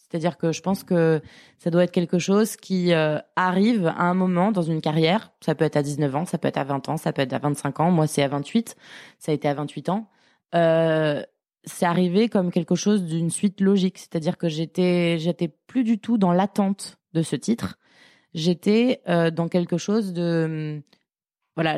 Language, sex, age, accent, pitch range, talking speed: French, female, 20-39, French, 165-205 Hz, 205 wpm